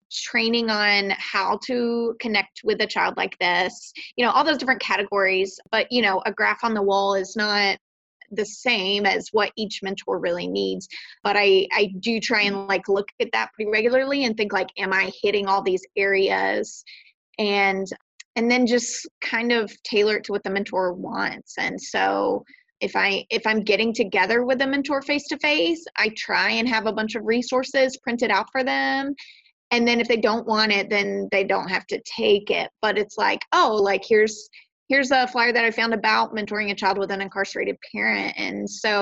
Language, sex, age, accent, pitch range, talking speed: English, female, 20-39, American, 195-235 Hz, 195 wpm